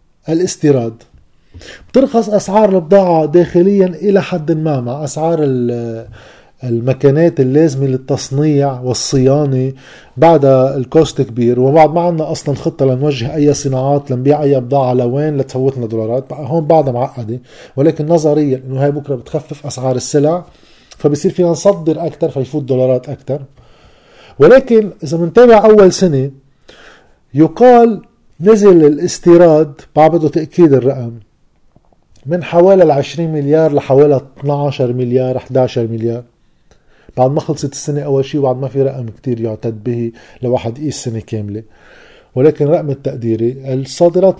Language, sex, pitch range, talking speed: Arabic, male, 125-160 Hz, 120 wpm